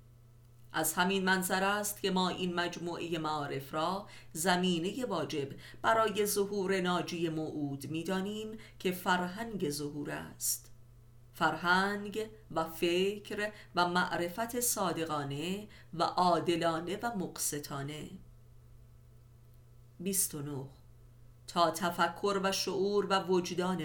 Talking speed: 100 wpm